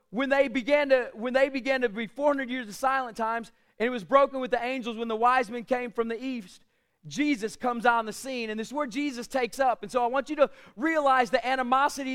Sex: male